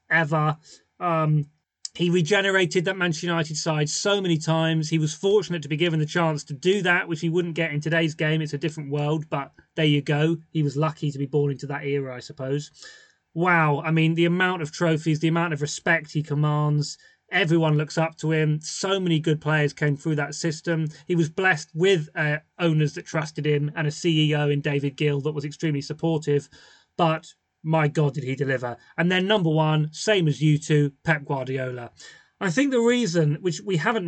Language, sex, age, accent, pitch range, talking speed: English, male, 30-49, British, 150-180 Hz, 205 wpm